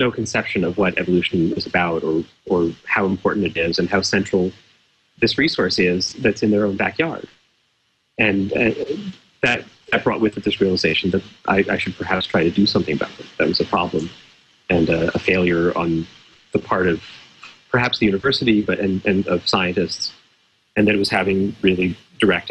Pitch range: 90-105 Hz